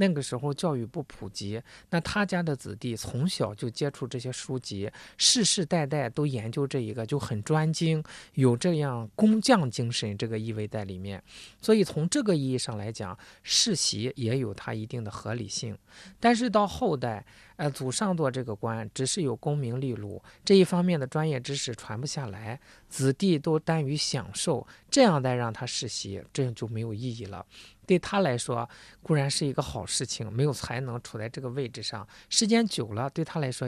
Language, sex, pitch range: Chinese, male, 115-155 Hz